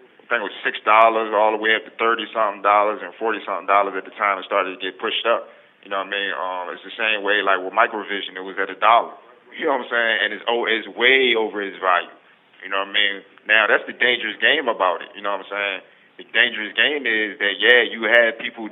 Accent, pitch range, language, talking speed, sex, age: American, 100-120 Hz, English, 270 wpm, male, 30-49